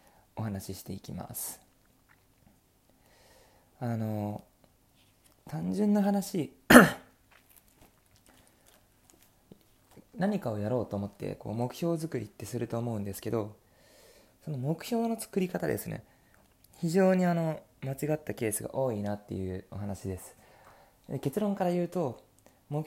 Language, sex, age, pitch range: Japanese, male, 20-39, 105-155 Hz